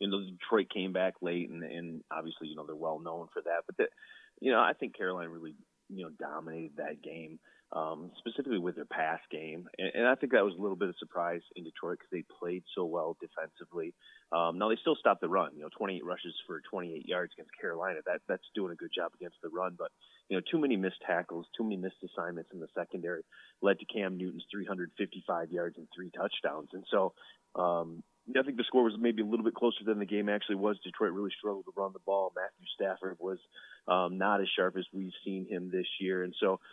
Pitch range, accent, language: 90-110 Hz, American, English